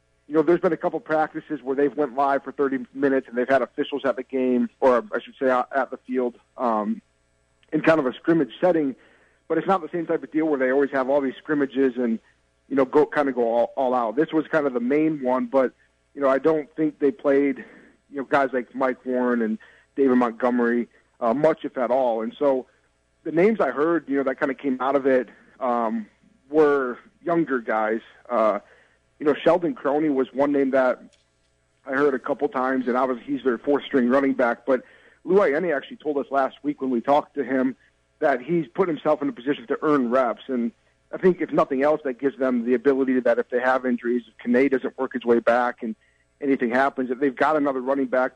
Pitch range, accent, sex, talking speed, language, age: 125-145 Hz, American, male, 230 wpm, English, 40-59